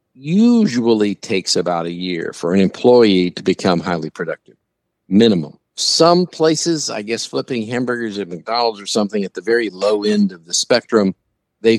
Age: 50-69